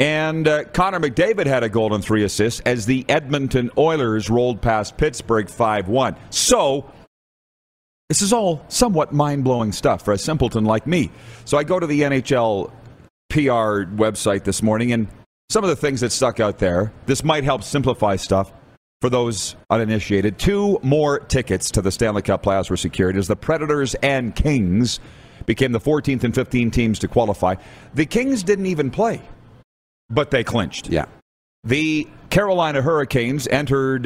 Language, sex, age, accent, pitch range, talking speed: English, male, 40-59, American, 110-145 Hz, 165 wpm